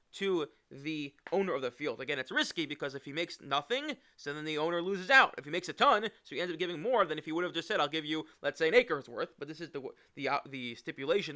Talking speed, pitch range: 285 wpm, 155-240 Hz